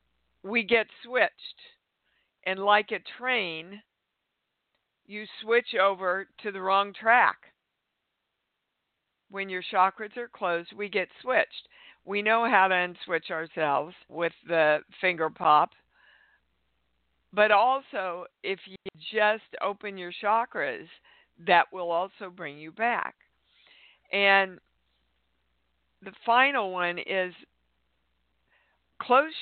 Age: 50-69